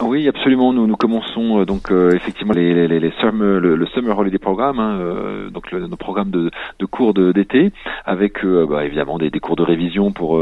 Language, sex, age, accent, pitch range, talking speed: French, male, 40-59, French, 80-100 Hz, 225 wpm